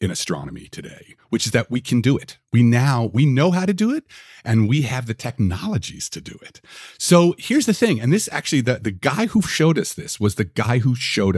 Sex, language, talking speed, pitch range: male, English, 235 wpm, 100-150 Hz